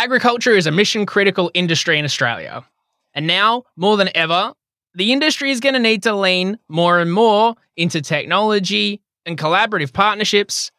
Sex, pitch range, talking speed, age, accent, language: male, 155-225 Hz, 155 wpm, 20-39, Australian, English